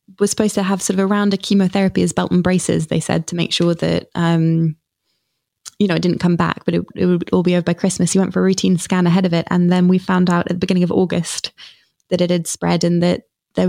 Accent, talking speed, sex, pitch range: British, 265 wpm, female, 170-195 Hz